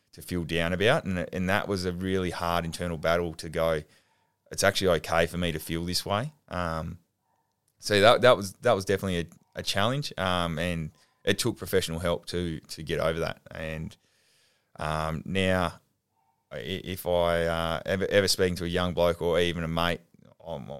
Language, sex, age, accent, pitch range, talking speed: English, male, 20-39, Australian, 80-95 Hz, 185 wpm